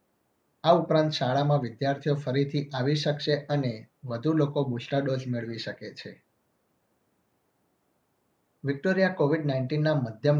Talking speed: 110 wpm